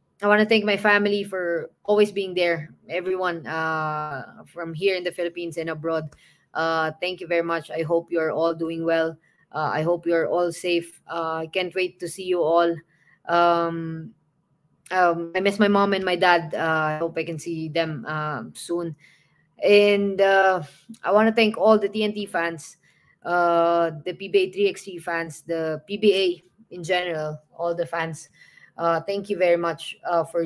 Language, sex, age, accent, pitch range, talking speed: English, female, 20-39, Filipino, 165-195 Hz, 175 wpm